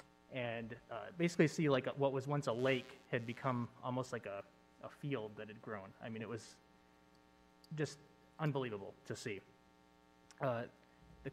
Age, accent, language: 20-39, American, English